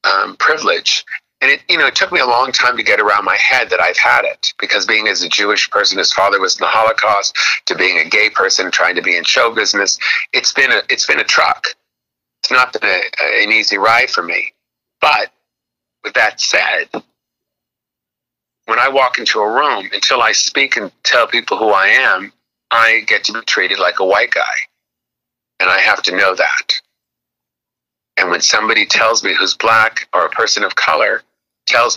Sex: male